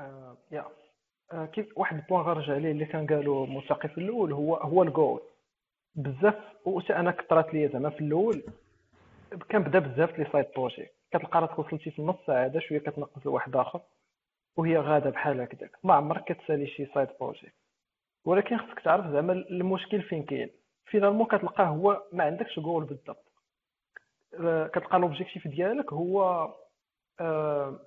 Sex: male